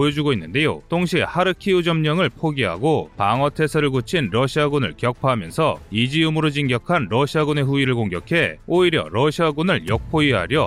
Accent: native